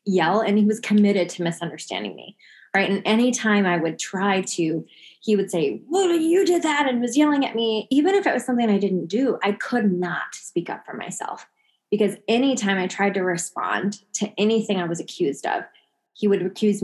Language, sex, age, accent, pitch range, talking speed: English, female, 20-39, American, 190-255 Hz, 205 wpm